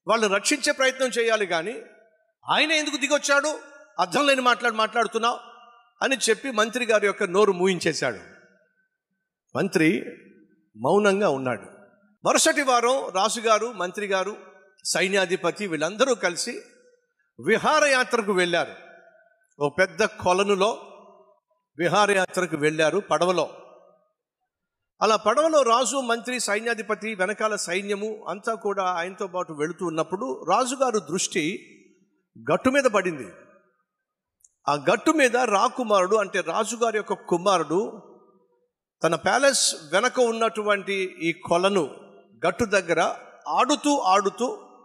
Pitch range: 190-260 Hz